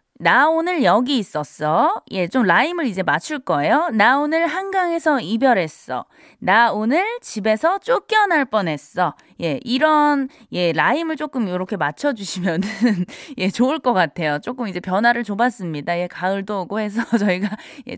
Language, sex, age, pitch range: Korean, female, 20-39, 180-285 Hz